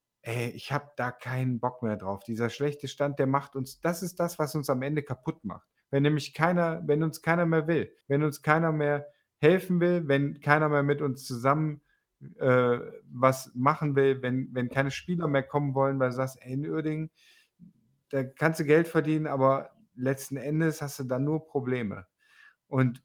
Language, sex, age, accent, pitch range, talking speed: German, male, 50-69, German, 120-145 Hz, 190 wpm